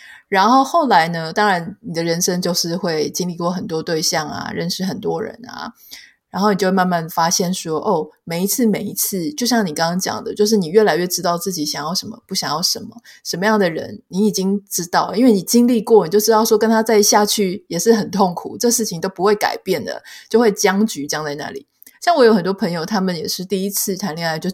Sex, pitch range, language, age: female, 175-220 Hz, Chinese, 20-39